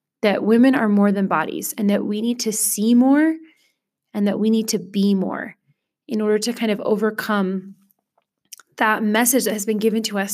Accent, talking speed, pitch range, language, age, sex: American, 195 wpm, 200-235 Hz, English, 20-39, female